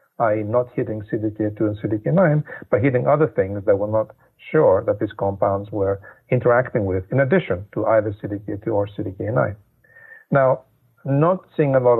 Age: 50-69